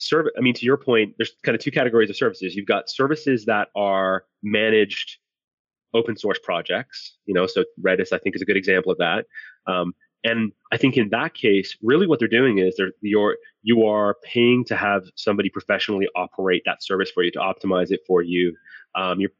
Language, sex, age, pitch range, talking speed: English, male, 30-49, 95-115 Hz, 200 wpm